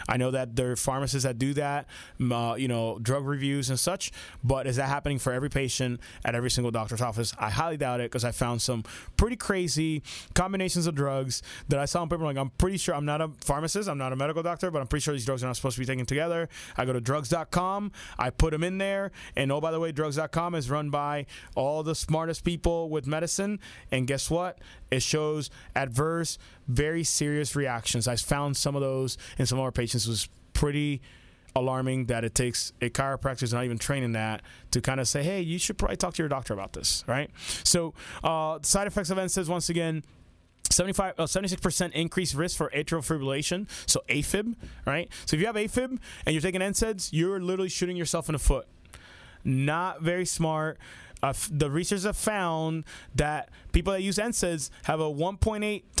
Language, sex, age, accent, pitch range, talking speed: English, male, 20-39, American, 130-170 Hz, 210 wpm